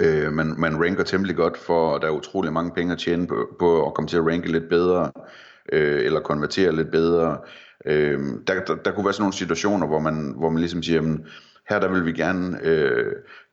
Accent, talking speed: native, 225 wpm